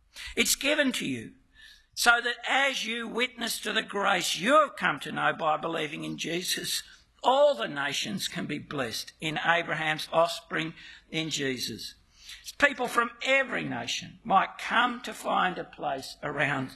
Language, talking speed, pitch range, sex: English, 155 wpm, 155-240 Hz, male